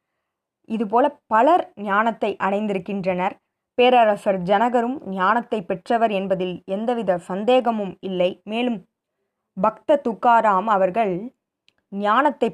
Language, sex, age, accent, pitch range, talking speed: Tamil, female, 20-39, native, 195-270 Hz, 80 wpm